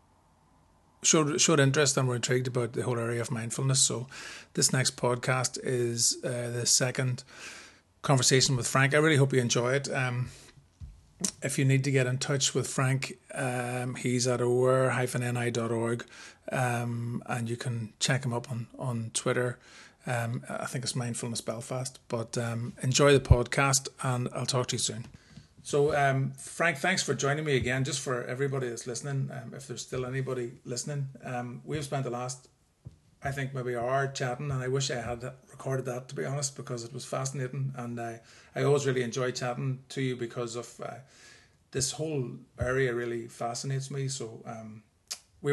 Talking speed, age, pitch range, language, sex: 175 wpm, 30-49, 120-135 Hz, English, male